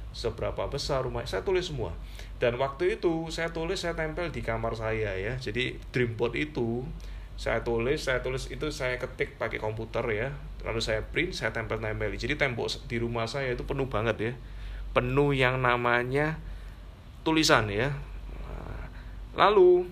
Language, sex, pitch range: Indonesian, male, 105-135 Hz